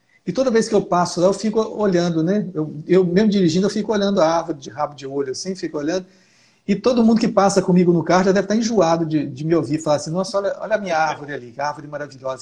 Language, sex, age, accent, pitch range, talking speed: Portuguese, male, 60-79, Brazilian, 155-200 Hz, 260 wpm